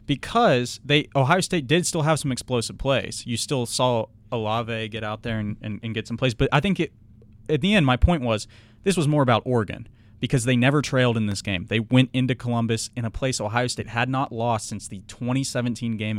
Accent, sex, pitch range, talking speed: American, male, 110-140 Hz, 225 wpm